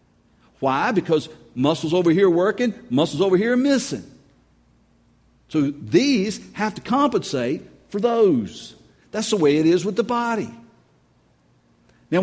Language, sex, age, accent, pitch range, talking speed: English, male, 50-69, American, 115-175 Hz, 130 wpm